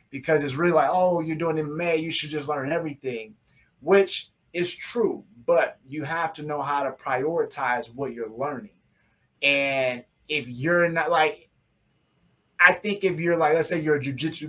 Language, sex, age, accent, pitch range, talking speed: English, male, 20-39, American, 135-160 Hz, 180 wpm